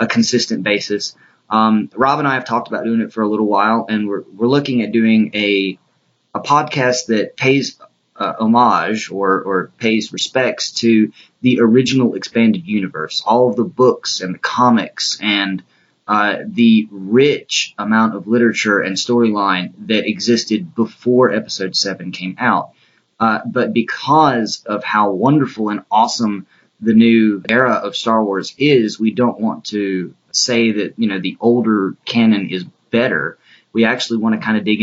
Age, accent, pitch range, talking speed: 20-39, American, 100-115 Hz, 165 wpm